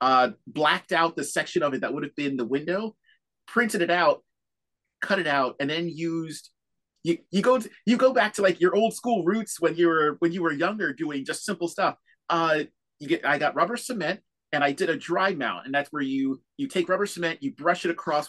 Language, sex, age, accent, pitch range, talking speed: English, male, 30-49, American, 150-210 Hz, 235 wpm